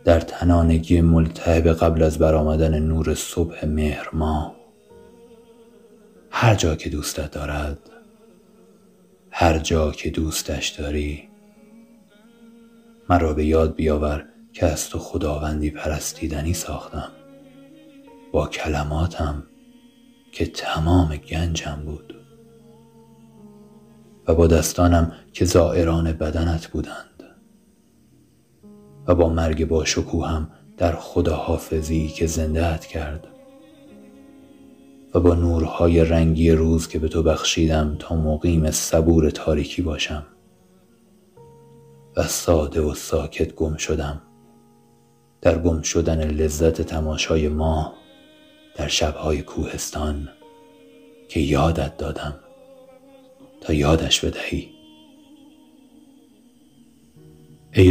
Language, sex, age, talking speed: English, male, 30-49, 95 wpm